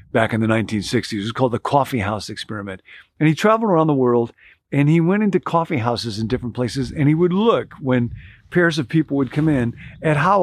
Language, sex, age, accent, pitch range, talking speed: English, male, 50-69, American, 105-140 Hz, 225 wpm